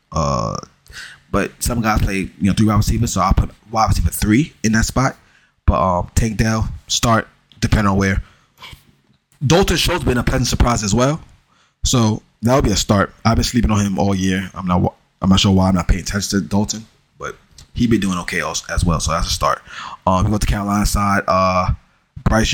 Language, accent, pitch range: English, American, 95-115 Hz